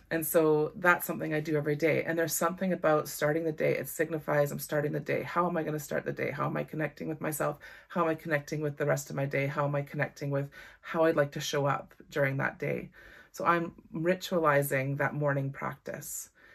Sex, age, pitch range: female, 30-49, 145-170 Hz